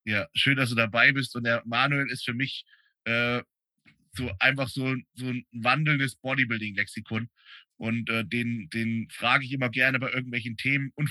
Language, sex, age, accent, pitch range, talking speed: German, male, 30-49, German, 115-135 Hz, 175 wpm